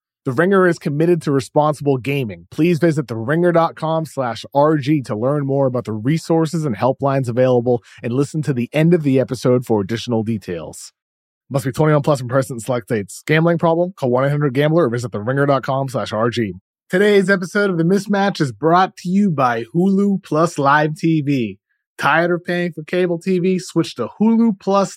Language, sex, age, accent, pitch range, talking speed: English, male, 30-49, American, 125-165 Hz, 185 wpm